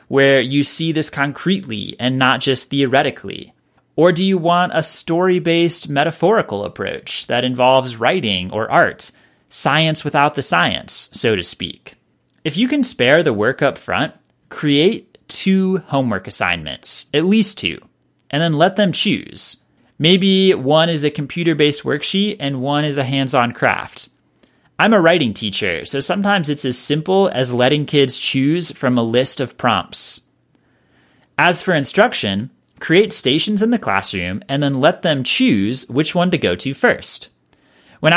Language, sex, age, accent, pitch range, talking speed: English, male, 30-49, American, 130-180 Hz, 155 wpm